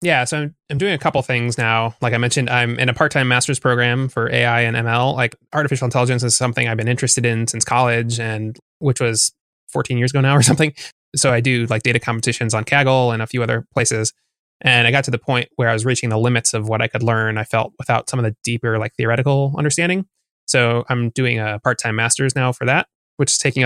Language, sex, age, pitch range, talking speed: English, male, 20-39, 115-135 Hz, 240 wpm